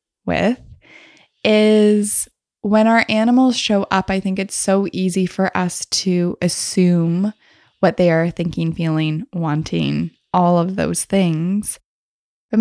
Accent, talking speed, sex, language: American, 130 wpm, female, English